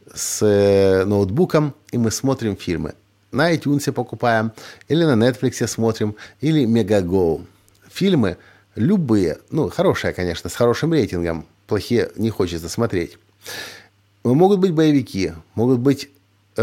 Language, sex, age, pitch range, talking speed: Russian, male, 50-69, 100-130 Hz, 115 wpm